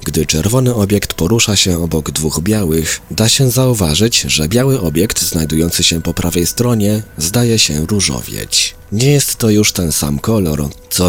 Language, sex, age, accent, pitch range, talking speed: Polish, male, 30-49, native, 80-110 Hz, 160 wpm